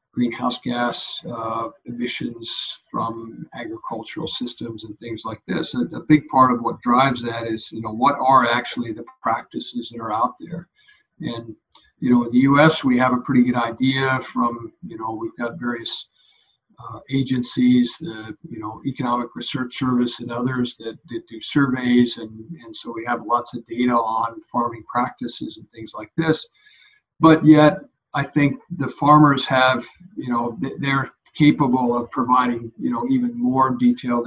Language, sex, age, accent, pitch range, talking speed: English, male, 50-69, American, 120-140 Hz, 170 wpm